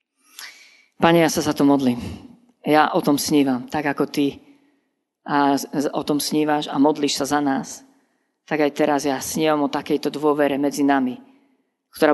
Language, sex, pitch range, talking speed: Slovak, female, 145-180 Hz, 165 wpm